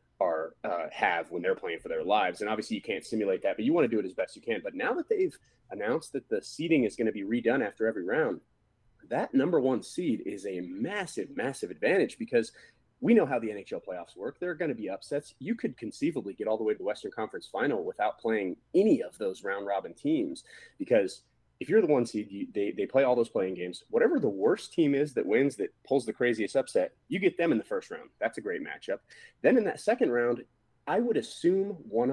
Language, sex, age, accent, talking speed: English, male, 30-49, American, 240 wpm